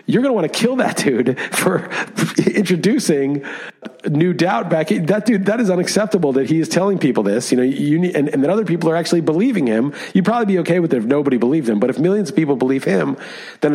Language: English